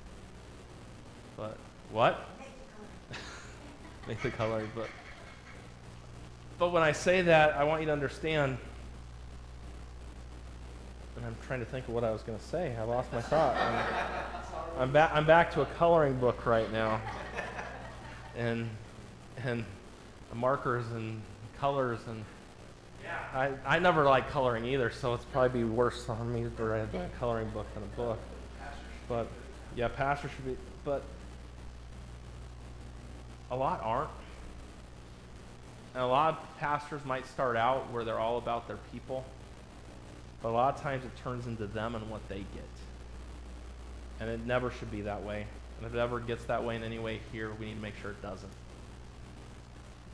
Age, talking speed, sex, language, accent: 20-39, 155 wpm, male, English, American